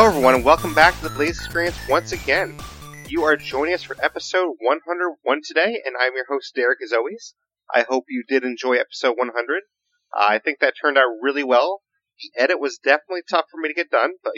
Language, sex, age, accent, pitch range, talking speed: English, male, 30-49, American, 130-180 Hz, 215 wpm